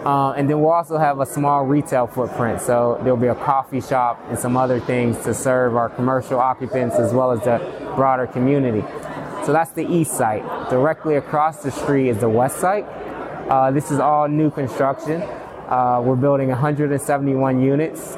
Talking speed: 180 wpm